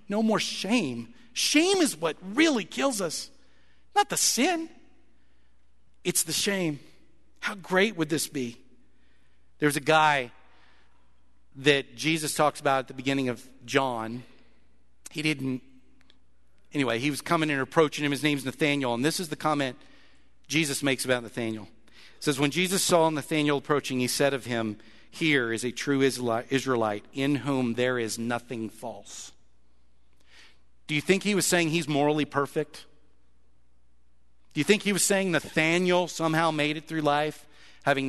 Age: 50-69